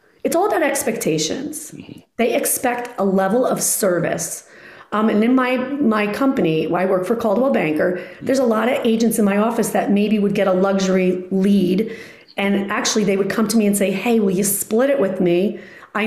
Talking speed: 200 wpm